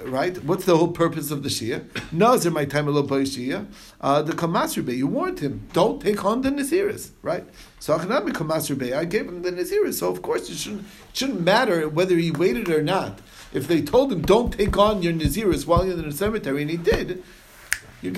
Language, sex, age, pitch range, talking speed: English, male, 50-69, 135-185 Hz, 210 wpm